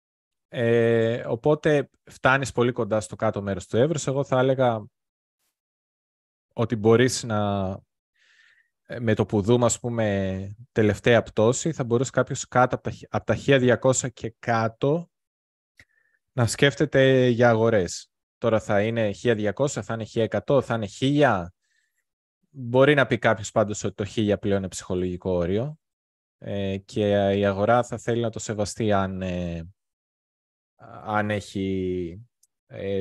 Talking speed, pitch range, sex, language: 135 wpm, 95-120 Hz, male, Greek